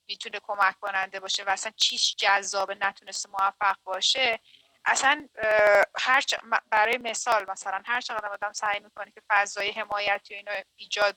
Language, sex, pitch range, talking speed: Persian, female, 205-250 Hz, 150 wpm